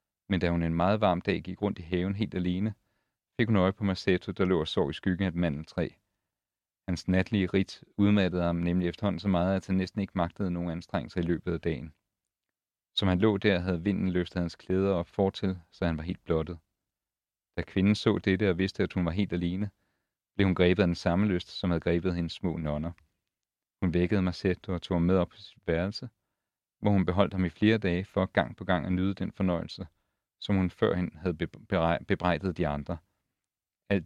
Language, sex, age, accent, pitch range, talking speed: Danish, male, 40-59, native, 85-100 Hz, 215 wpm